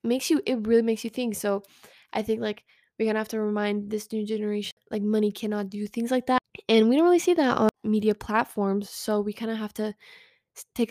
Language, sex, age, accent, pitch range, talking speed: English, female, 10-29, American, 210-230 Hz, 230 wpm